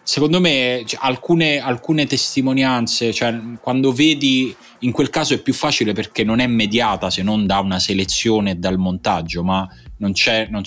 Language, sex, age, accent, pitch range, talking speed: Italian, male, 20-39, native, 90-110 Hz, 165 wpm